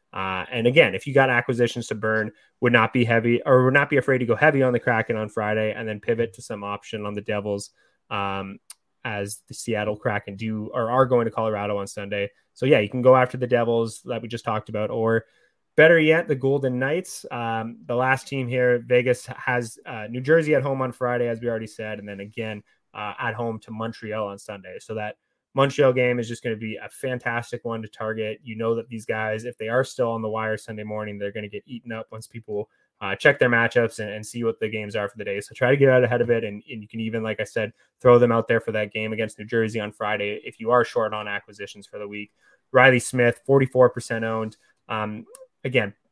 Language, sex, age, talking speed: English, male, 20-39, 245 wpm